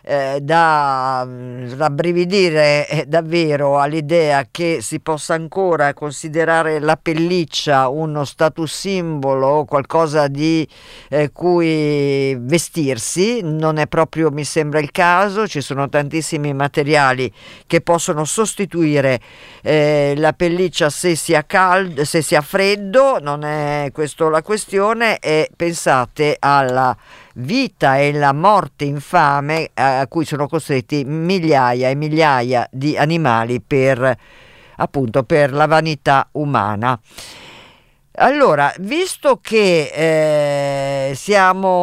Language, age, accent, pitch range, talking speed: Italian, 50-69, native, 140-180 Hz, 110 wpm